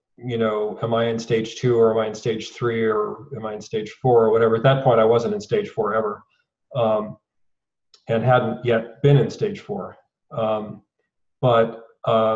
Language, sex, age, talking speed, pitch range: English, male, 40-59, 200 wpm, 115-135 Hz